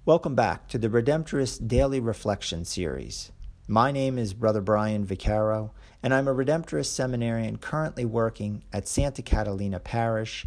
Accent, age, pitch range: American, 50-69, 95-135 Hz